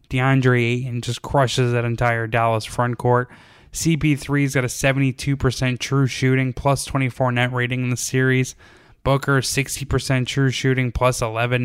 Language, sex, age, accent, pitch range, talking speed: English, male, 10-29, American, 120-140 Hz, 140 wpm